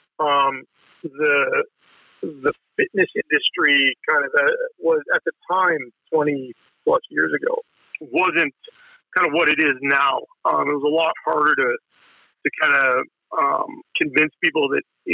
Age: 50-69